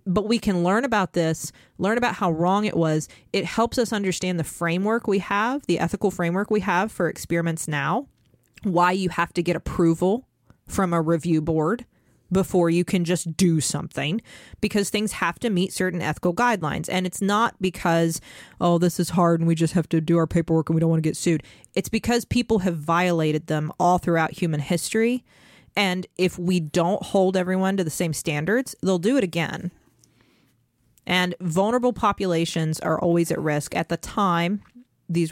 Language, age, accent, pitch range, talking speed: English, 30-49, American, 160-190 Hz, 185 wpm